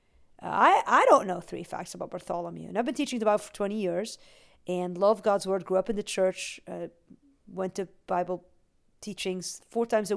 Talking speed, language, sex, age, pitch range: 200 wpm, English, female, 50-69, 190-255 Hz